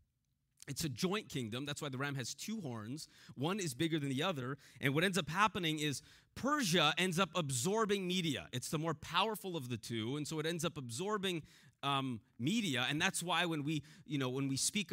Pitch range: 145-210 Hz